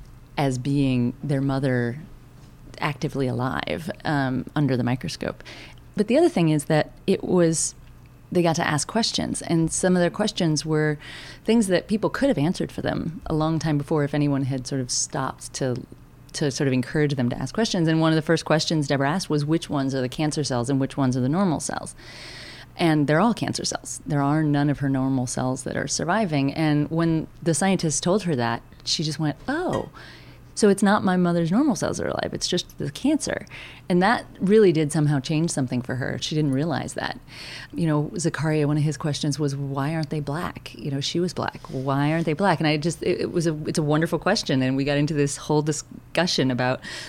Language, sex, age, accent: English, female, 30-49, American